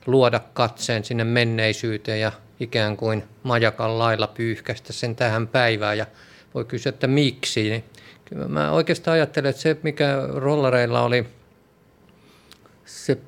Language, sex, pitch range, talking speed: Finnish, male, 110-135 Hz, 130 wpm